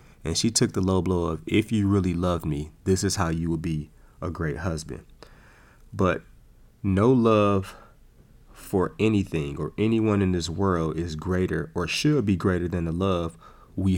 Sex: male